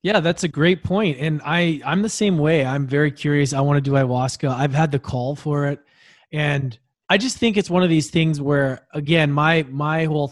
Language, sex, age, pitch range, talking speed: English, male, 20-39, 130-165 Hz, 225 wpm